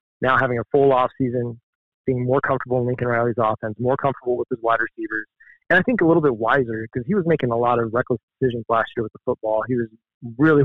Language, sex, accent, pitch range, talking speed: English, male, American, 115-135 Hz, 240 wpm